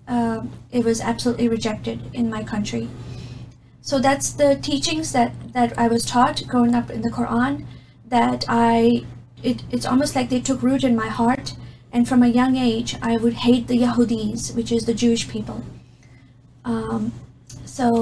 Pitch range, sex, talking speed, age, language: 230-255 Hz, female, 170 wpm, 30-49, English